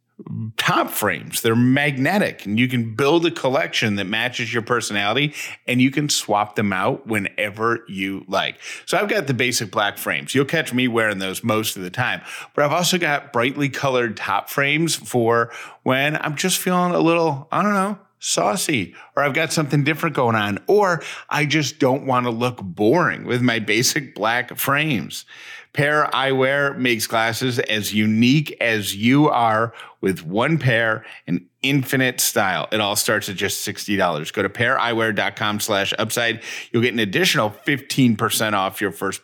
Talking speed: 170 wpm